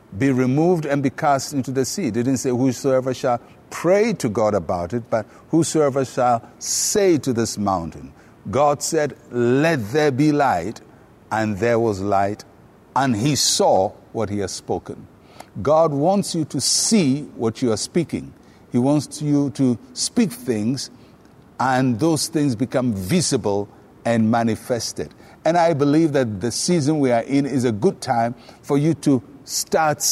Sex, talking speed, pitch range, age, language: male, 160 wpm, 115-150 Hz, 60-79, English